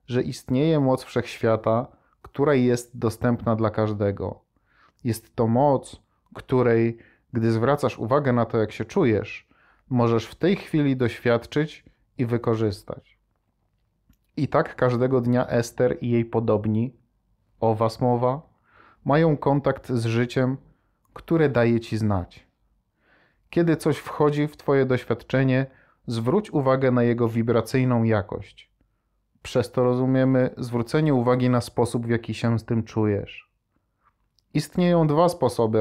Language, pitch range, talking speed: Polish, 115-135 Hz, 125 wpm